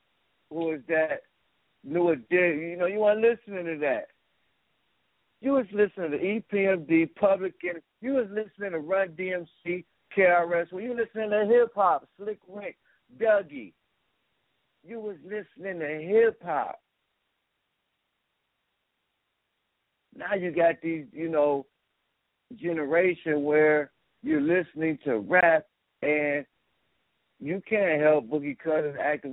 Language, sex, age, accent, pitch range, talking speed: English, male, 60-79, American, 155-190 Hz, 115 wpm